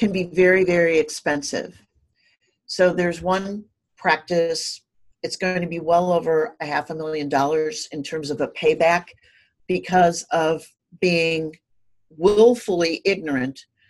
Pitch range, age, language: 155-185 Hz, 50-69, English